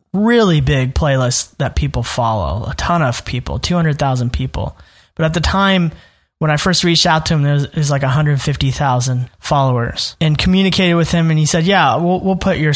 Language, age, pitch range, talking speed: English, 20-39, 140-180 Hz, 200 wpm